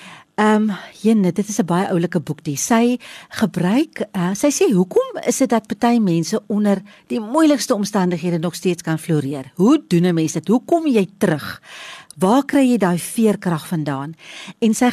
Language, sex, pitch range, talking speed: English, female, 160-215 Hz, 175 wpm